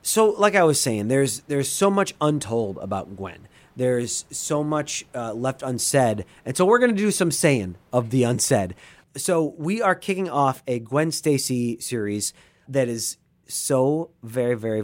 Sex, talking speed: male, 175 wpm